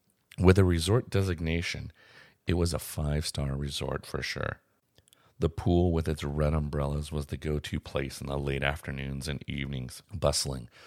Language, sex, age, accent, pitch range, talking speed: English, male, 40-59, American, 75-95 Hz, 155 wpm